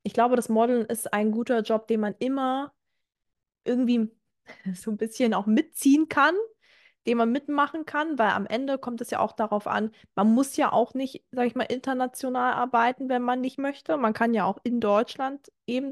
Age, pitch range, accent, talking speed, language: 20-39, 205-250 Hz, German, 195 wpm, German